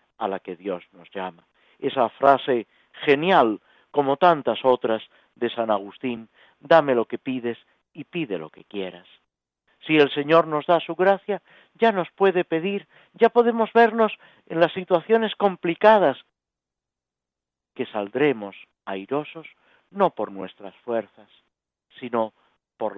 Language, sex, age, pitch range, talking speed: Spanish, male, 50-69, 105-165 Hz, 135 wpm